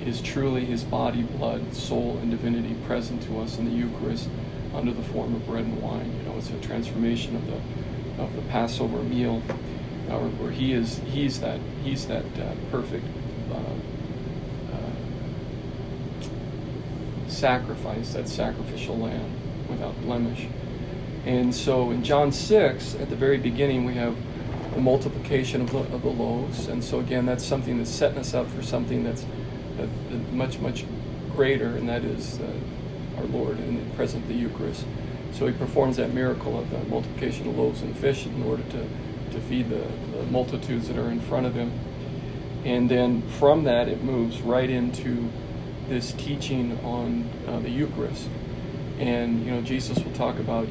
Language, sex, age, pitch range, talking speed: English, male, 40-59, 115-130 Hz, 170 wpm